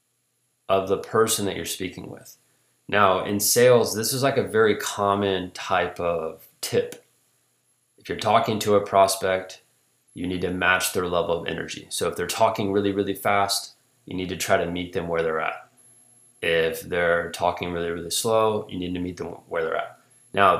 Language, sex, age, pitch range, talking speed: English, male, 20-39, 95-125 Hz, 190 wpm